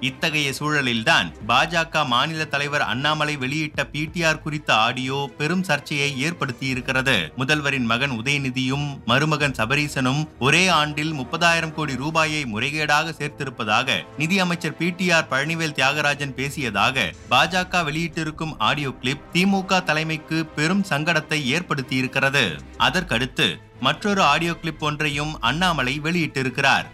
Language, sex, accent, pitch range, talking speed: Tamil, male, native, 135-165 Hz, 110 wpm